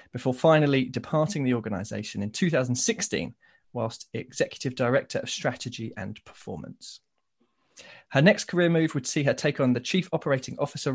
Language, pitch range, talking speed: English, 120-155 Hz, 150 wpm